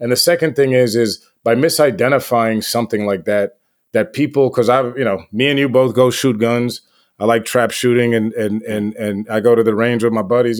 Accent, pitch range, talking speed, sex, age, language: American, 115-135 Hz, 230 wpm, male, 30-49, English